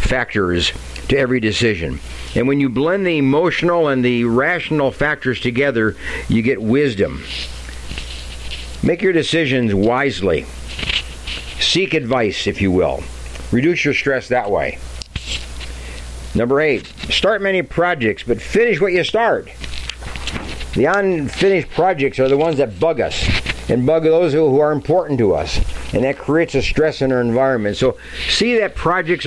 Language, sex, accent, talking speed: English, male, American, 145 wpm